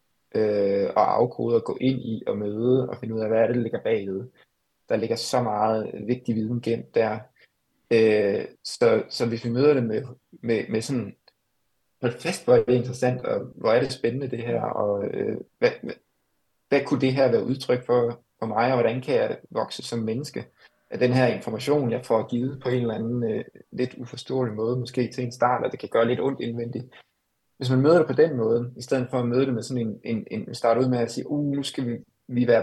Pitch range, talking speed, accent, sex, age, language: 115-130 Hz, 225 wpm, native, male, 20-39, Danish